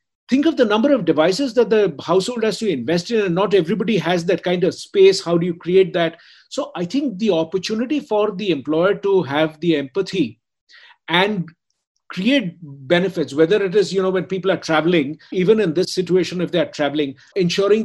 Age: 50-69